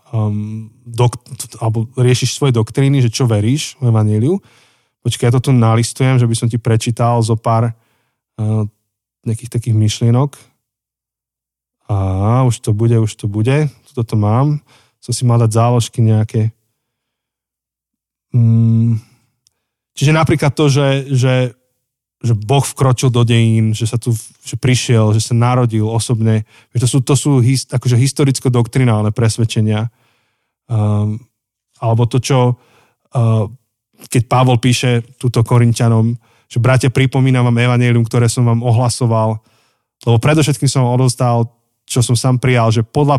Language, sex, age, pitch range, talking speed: Slovak, male, 20-39, 115-130 Hz, 130 wpm